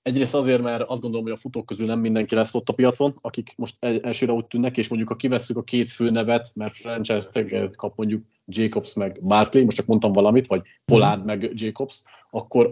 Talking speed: 210 wpm